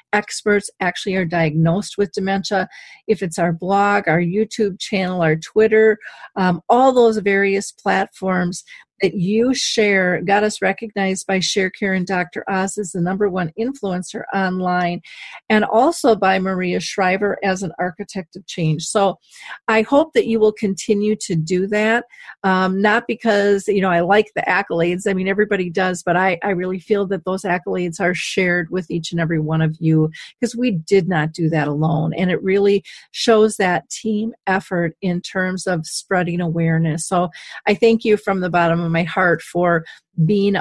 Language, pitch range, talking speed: English, 175-210 Hz, 175 wpm